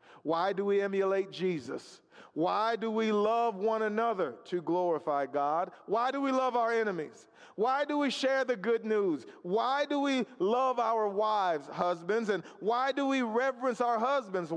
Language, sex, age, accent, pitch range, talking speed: English, male, 40-59, American, 210-265 Hz, 170 wpm